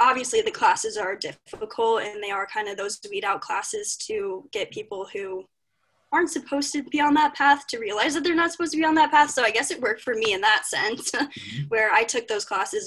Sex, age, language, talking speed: female, 10-29, English, 240 wpm